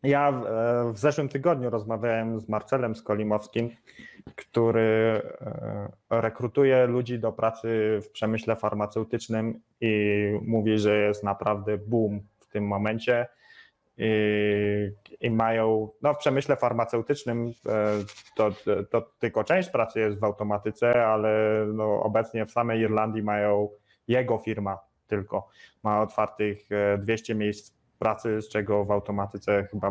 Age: 20-39